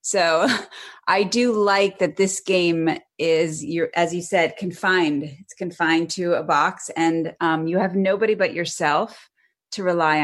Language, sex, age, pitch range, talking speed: English, female, 30-49, 160-195 Hz, 160 wpm